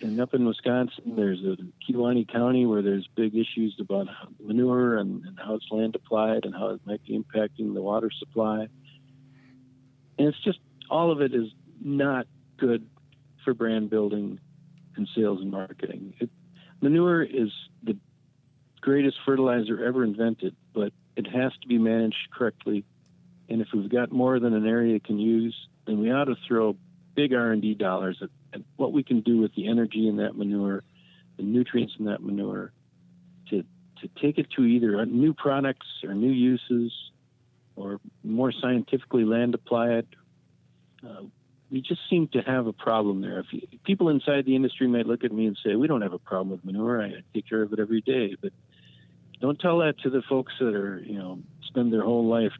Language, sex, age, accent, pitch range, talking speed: English, male, 50-69, American, 105-135 Hz, 185 wpm